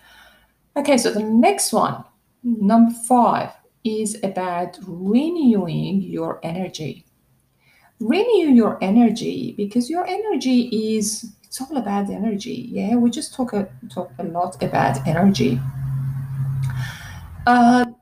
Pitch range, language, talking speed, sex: 180-245 Hz, English, 110 wpm, female